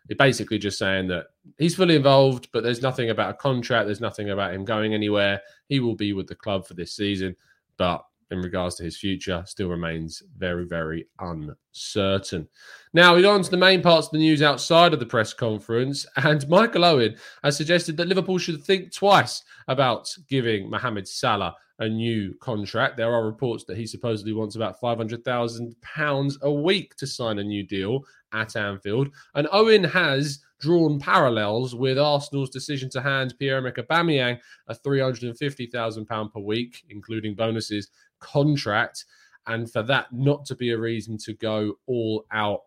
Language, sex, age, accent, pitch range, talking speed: English, male, 20-39, British, 105-140 Hz, 170 wpm